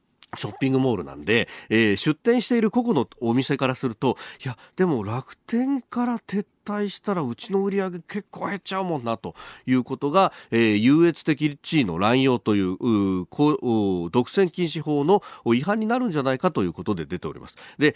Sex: male